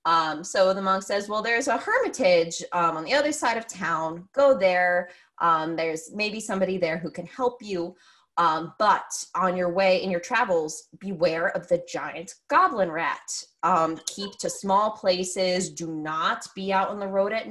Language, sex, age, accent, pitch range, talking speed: English, female, 20-39, American, 175-235 Hz, 185 wpm